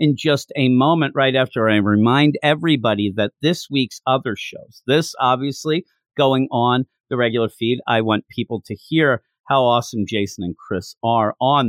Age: 50-69